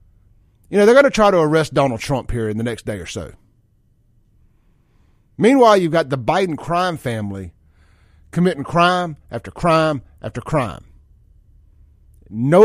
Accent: American